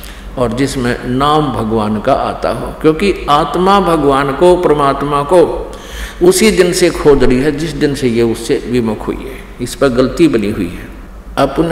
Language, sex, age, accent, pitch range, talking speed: Hindi, male, 50-69, native, 145-180 Hz, 175 wpm